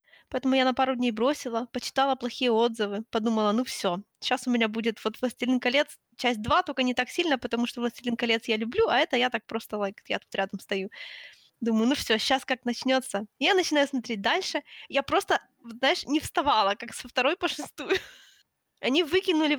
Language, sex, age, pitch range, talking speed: Ukrainian, female, 20-39, 235-280 Hz, 195 wpm